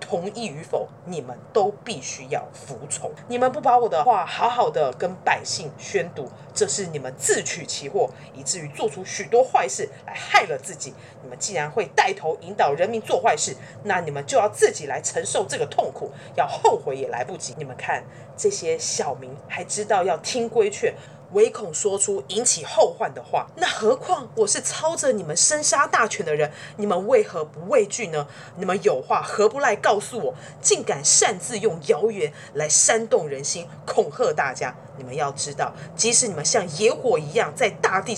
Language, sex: Chinese, female